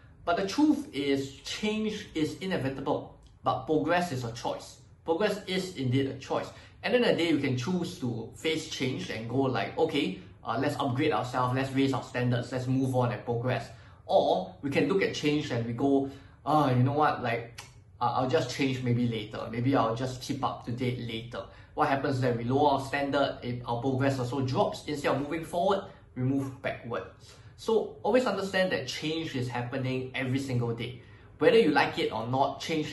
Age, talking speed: 20-39, 200 wpm